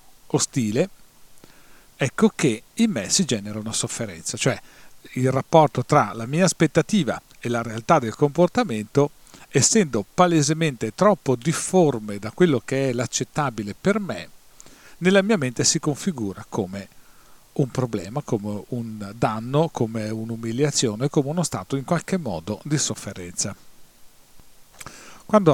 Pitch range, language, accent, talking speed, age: 115-155 Hz, Italian, native, 125 wpm, 40-59